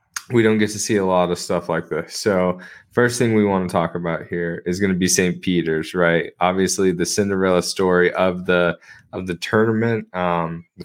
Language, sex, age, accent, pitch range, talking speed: English, male, 20-39, American, 95-120 Hz, 205 wpm